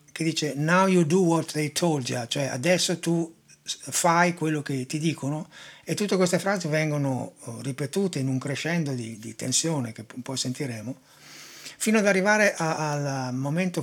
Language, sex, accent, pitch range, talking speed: Italian, male, native, 140-175 Hz, 160 wpm